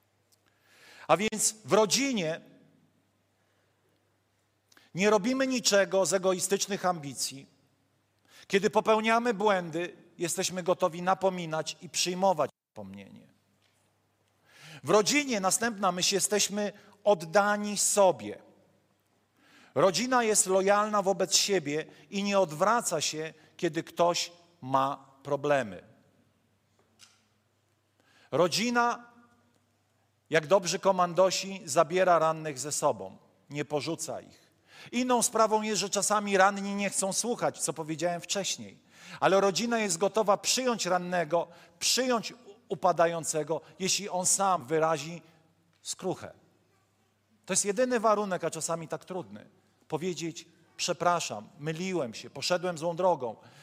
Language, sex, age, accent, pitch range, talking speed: Polish, male, 40-59, native, 140-200 Hz, 100 wpm